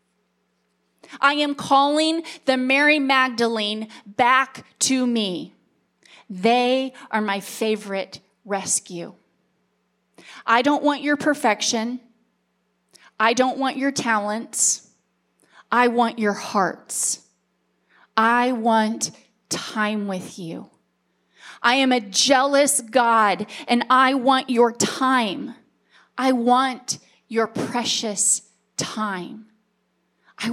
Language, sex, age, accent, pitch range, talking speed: English, female, 30-49, American, 215-270 Hz, 95 wpm